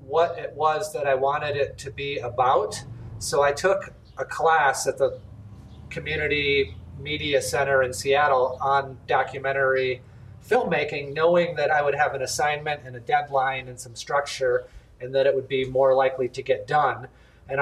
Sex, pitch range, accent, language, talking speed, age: male, 130-165 Hz, American, English, 165 wpm, 30-49